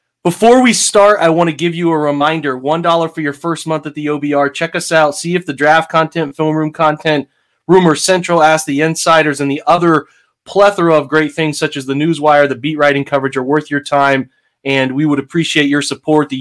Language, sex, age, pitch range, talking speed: English, male, 30-49, 145-170 Hz, 220 wpm